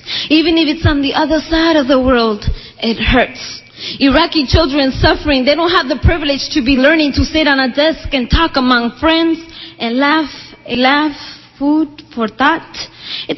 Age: 20-39